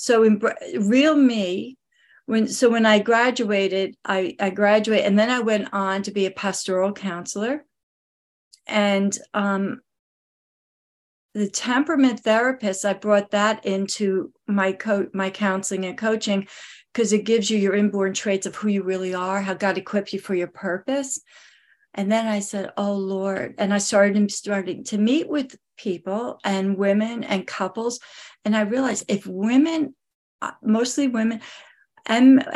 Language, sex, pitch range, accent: English, female, 195-225 Hz, American